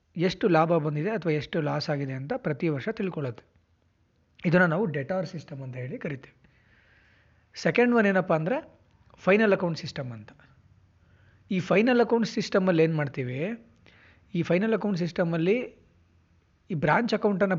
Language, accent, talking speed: Kannada, native, 135 wpm